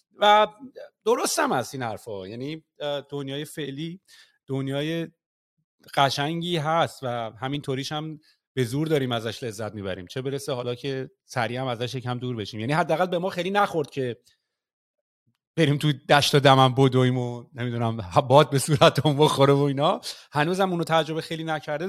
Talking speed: 155 wpm